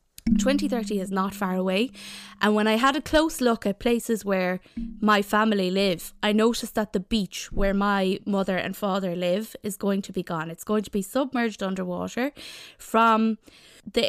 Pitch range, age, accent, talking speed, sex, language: 195-255 Hz, 20-39, Irish, 180 wpm, female, English